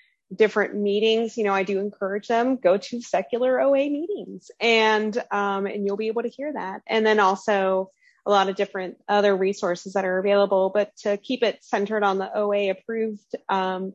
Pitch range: 195-230 Hz